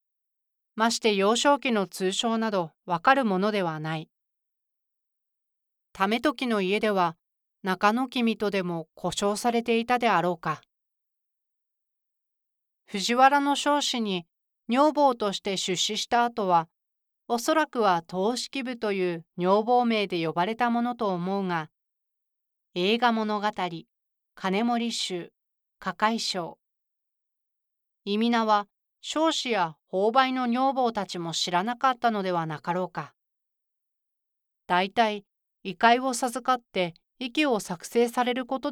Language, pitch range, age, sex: Japanese, 185-245 Hz, 40-59, female